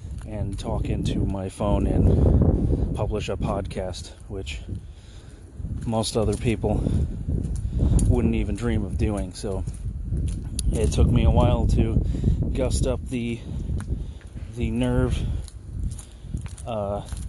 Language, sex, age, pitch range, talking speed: English, male, 30-49, 95-110 Hz, 110 wpm